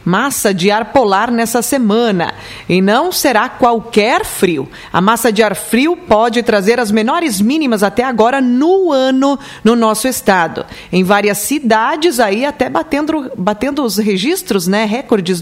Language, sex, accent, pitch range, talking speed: Portuguese, female, Brazilian, 200-245 Hz, 150 wpm